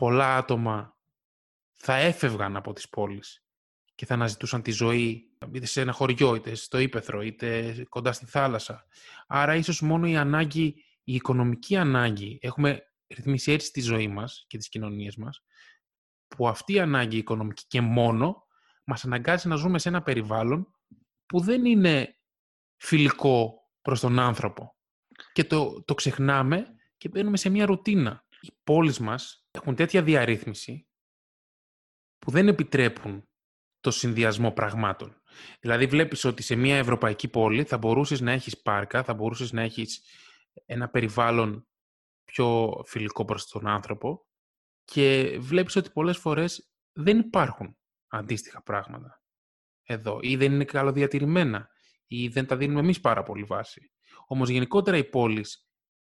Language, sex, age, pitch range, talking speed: Greek, male, 20-39, 115-145 Hz, 140 wpm